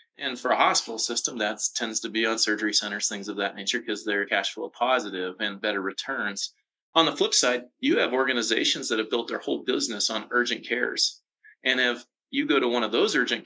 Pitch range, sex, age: 110-160 Hz, male, 30-49